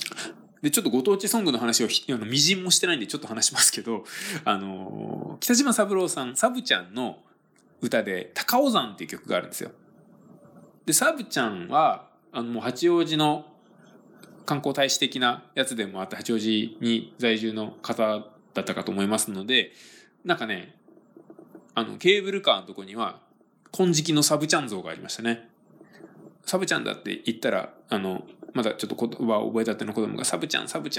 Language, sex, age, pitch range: Japanese, male, 20-39, 110-185 Hz